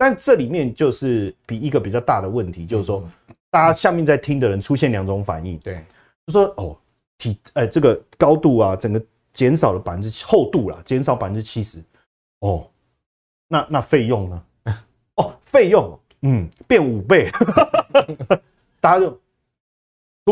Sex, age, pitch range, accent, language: male, 30-49, 110-160 Hz, native, Chinese